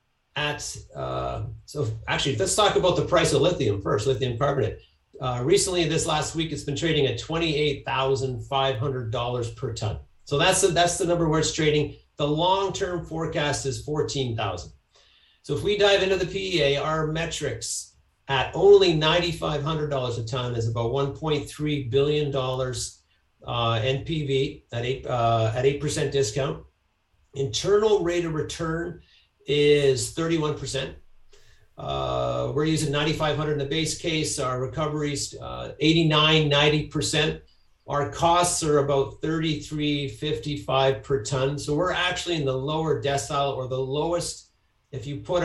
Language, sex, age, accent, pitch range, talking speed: English, male, 50-69, American, 130-155 Hz, 135 wpm